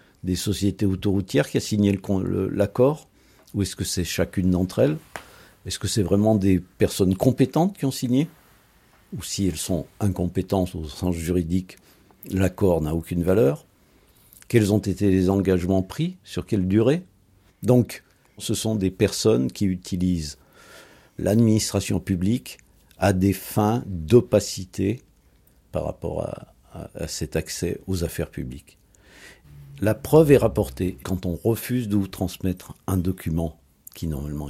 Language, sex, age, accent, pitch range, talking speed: French, male, 50-69, French, 90-105 Hz, 145 wpm